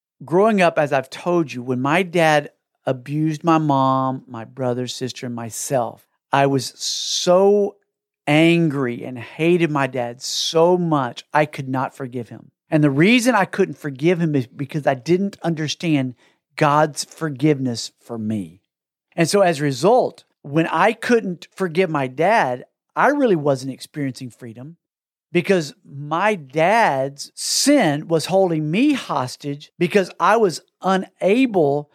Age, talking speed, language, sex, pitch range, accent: 50-69, 145 wpm, English, male, 135-185 Hz, American